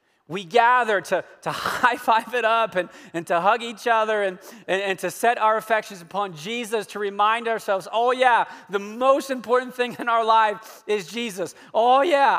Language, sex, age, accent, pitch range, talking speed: English, male, 30-49, American, 205-245 Hz, 190 wpm